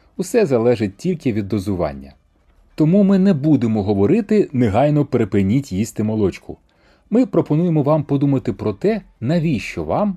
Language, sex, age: Ukrainian, male, 30-49